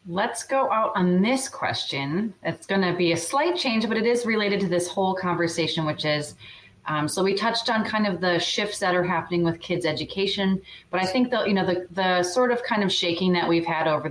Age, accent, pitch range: 30-49, American, 170-230 Hz